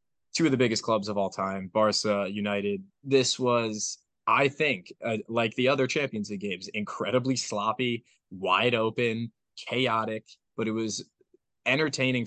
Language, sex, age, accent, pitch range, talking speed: English, male, 20-39, American, 105-125 Hz, 145 wpm